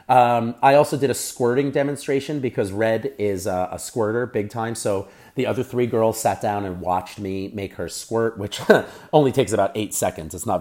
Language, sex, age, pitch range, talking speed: English, male, 30-49, 95-125 Hz, 205 wpm